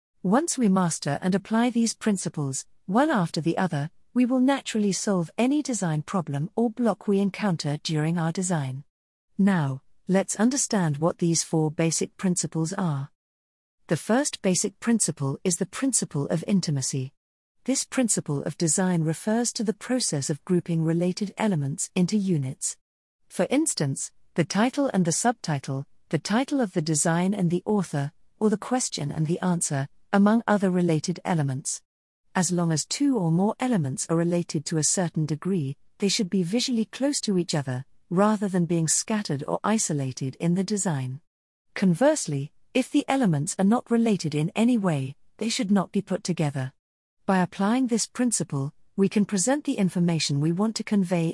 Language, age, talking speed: English, 50-69, 165 wpm